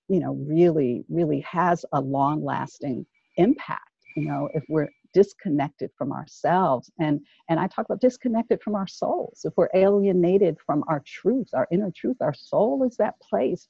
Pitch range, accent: 150-190 Hz, American